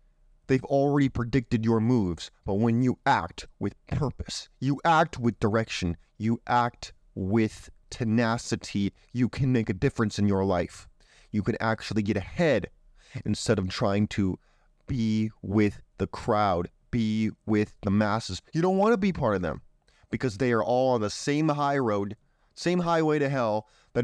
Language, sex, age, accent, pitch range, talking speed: English, male, 30-49, American, 110-150 Hz, 165 wpm